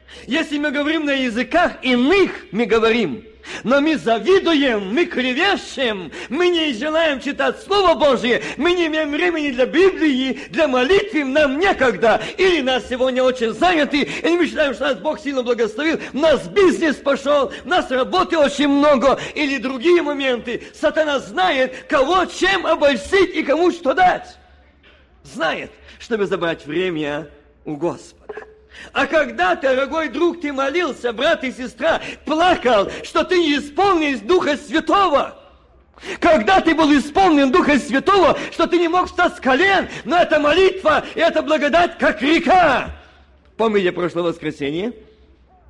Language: Russian